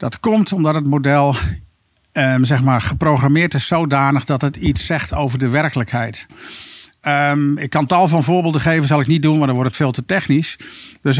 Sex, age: male, 50-69